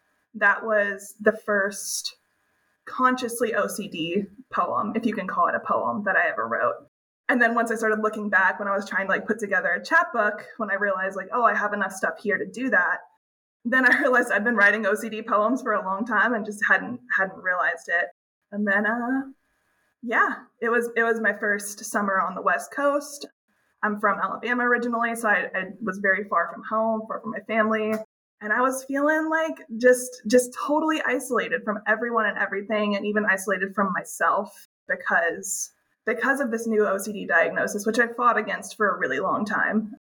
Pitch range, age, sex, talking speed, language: 205-240 Hz, 20-39, female, 195 wpm, English